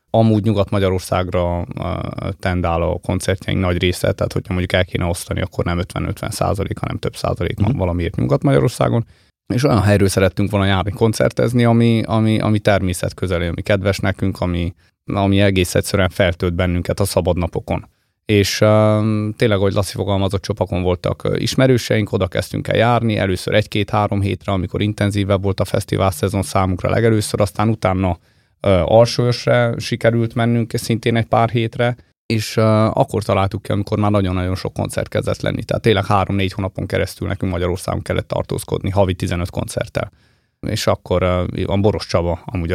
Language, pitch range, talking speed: Hungarian, 90-110 Hz, 155 wpm